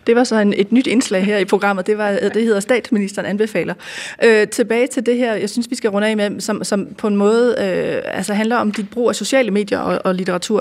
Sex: female